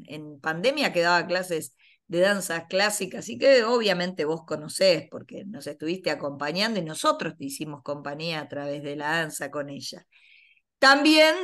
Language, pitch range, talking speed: Spanish, 165-255 Hz, 150 wpm